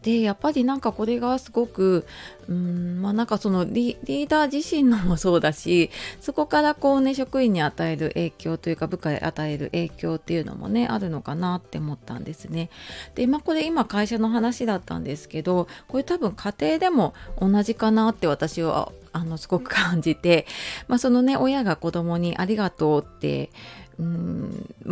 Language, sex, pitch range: Japanese, female, 165-235 Hz